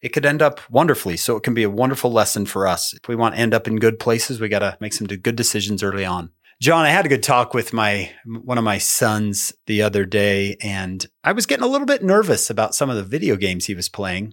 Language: English